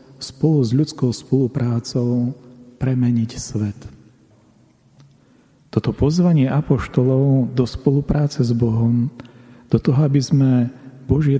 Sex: male